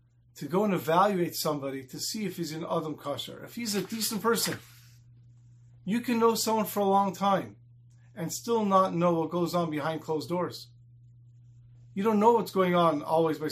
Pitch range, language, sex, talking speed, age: 120-190 Hz, English, male, 190 wpm, 40-59